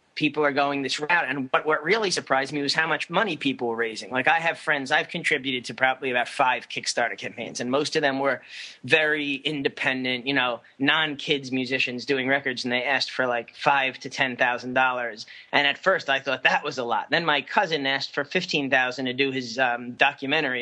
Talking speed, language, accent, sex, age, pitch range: 215 wpm, English, American, male, 30-49, 130-150 Hz